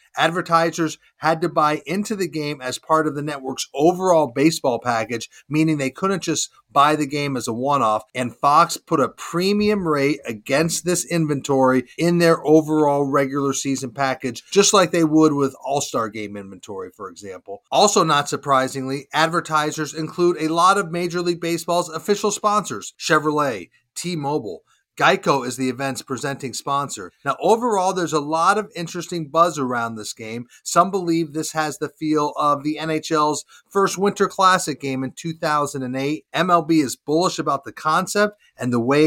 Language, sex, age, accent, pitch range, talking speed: English, male, 30-49, American, 130-170 Hz, 165 wpm